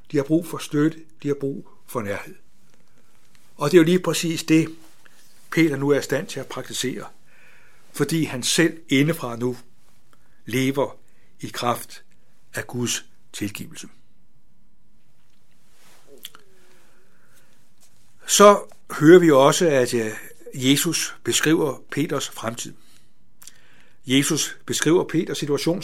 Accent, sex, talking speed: native, male, 115 wpm